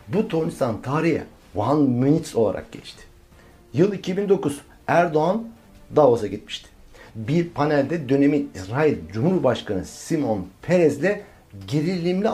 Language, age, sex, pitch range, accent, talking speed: Turkish, 60-79, male, 140-205 Hz, native, 100 wpm